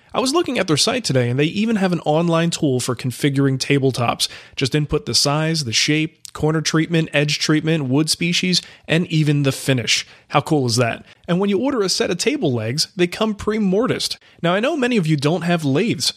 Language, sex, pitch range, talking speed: English, male, 130-180 Hz, 215 wpm